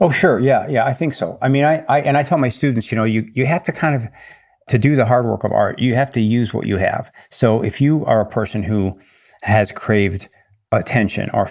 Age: 50-69